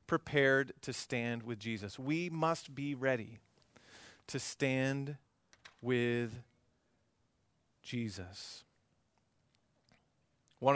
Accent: American